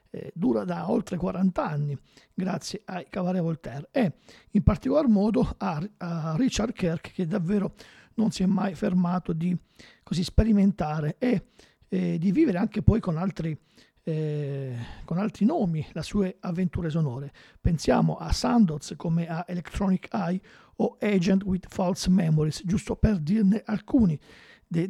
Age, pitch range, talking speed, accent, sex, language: 50-69, 170-215 Hz, 145 wpm, native, male, Italian